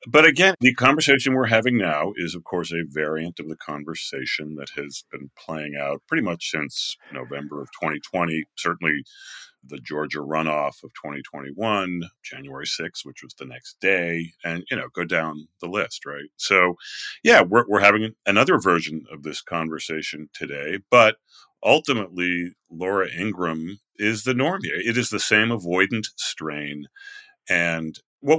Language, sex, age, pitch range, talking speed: English, male, 40-59, 80-115 Hz, 155 wpm